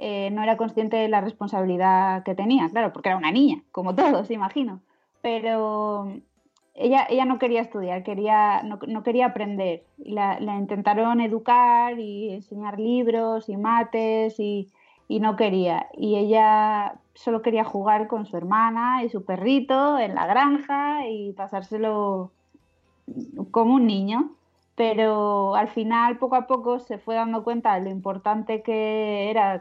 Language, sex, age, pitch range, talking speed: Spanish, female, 20-39, 200-235 Hz, 150 wpm